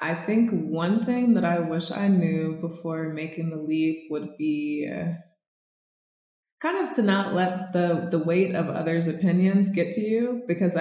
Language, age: English, 20-39